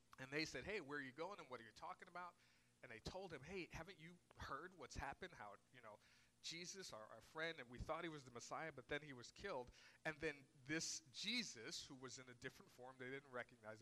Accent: American